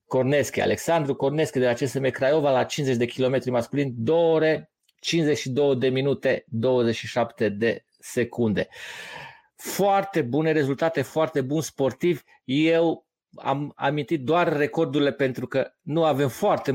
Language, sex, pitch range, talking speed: Romanian, male, 125-160 Hz, 130 wpm